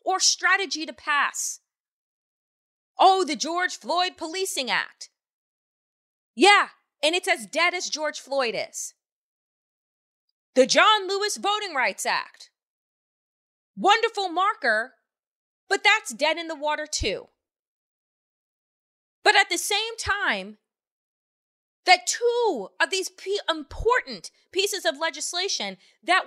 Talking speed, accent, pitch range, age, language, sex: 110 wpm, American, 305-420 Hz, 30-49, English, female